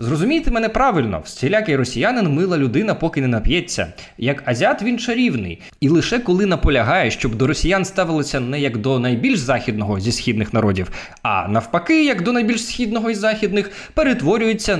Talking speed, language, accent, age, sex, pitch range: 160 wpm, Ukrainian, native, 20-39, male, 125-195 Hz